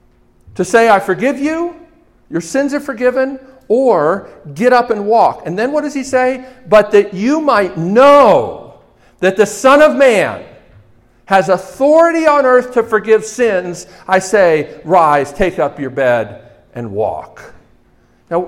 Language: English